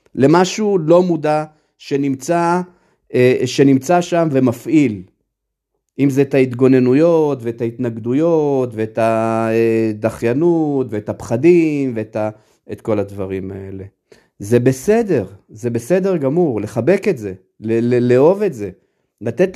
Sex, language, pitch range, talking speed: male, Hebrew, 115-175 Hz, 105 wpm